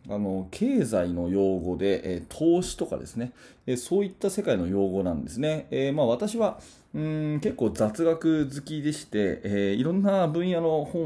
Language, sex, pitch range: Japanese, male, 100-155 Hz